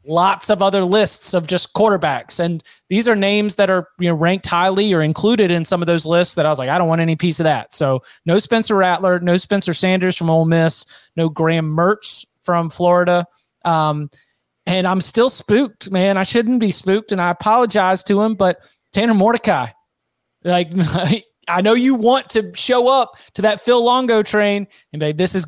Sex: male